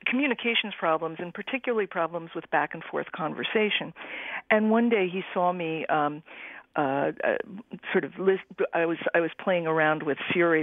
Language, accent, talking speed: English, American, 160 wpm